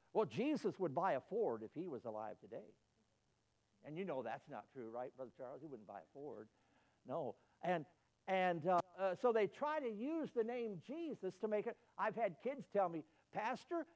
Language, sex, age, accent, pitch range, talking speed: English, male, 60-79, American, 150-225 Hz, 200 wpm